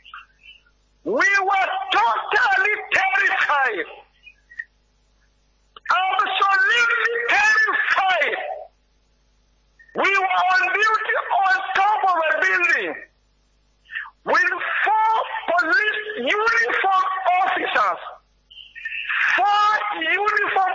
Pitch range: 360-425 Hz